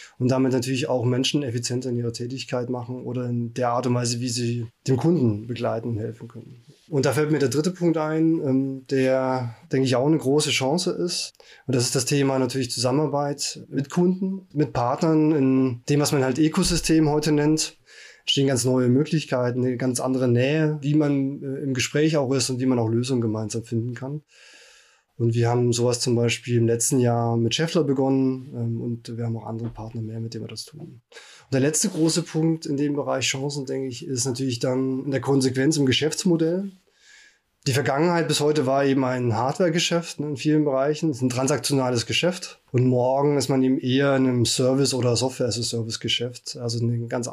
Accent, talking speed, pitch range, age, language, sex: German, 195 wpm, 120-145 Hz, 20-39, German, male